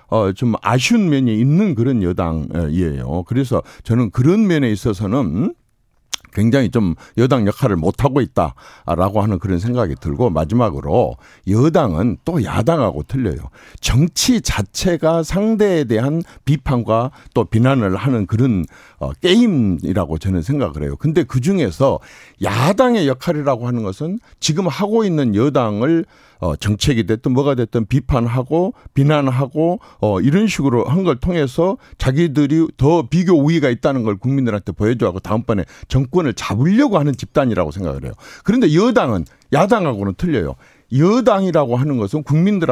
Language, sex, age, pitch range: Korean, male, 50-69, 110-165 Hz